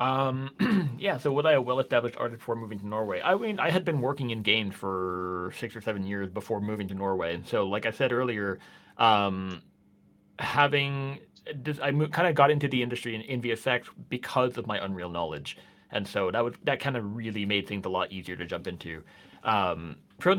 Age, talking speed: 30-49, 200 wpm